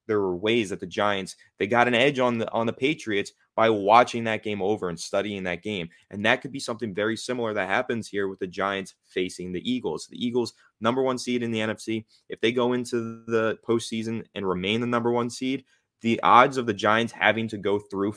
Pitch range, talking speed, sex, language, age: 100-115 Hz, 230 wpm, male, English, 20-39